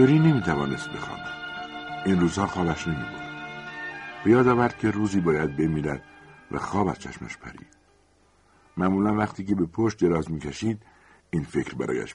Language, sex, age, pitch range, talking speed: Persian, male, 60-79, 75-95 Hz, 145 wpm